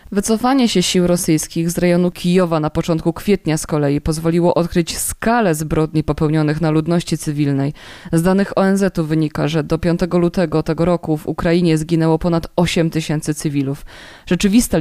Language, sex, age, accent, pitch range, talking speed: Polish, female, 20-39, native, 160-185 Hz, 155 wpm